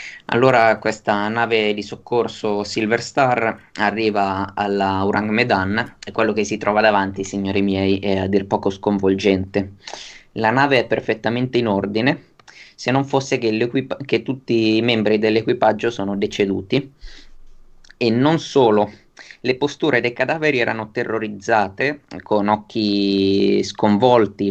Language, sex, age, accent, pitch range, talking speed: Italian, male, 20-39, native, 100-115 Hz, 130 wpm